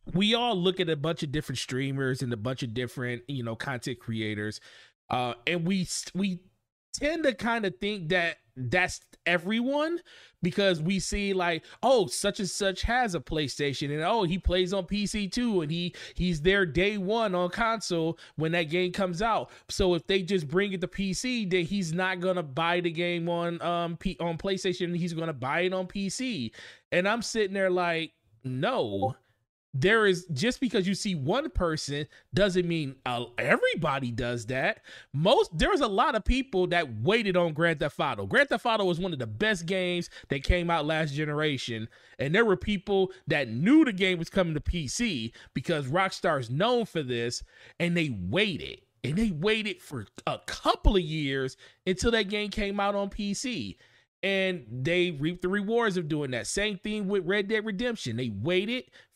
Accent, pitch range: American, 150-200 Hz